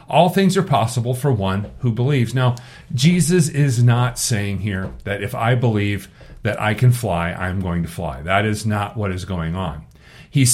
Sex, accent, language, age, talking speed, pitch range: male, American, English, 40-59, 195 wpm, 110-140 Hz